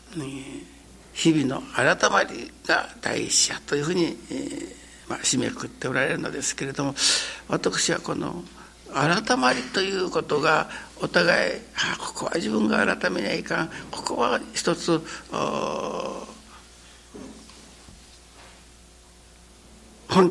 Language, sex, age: Japanese, male, 60-79